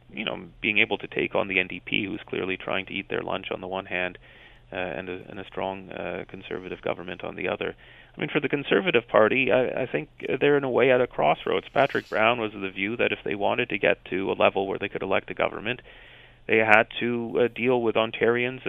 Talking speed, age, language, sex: 245 wpm, 30-49, English, male